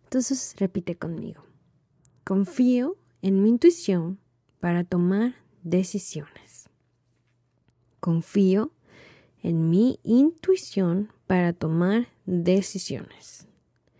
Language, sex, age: Spanish, female, 20-39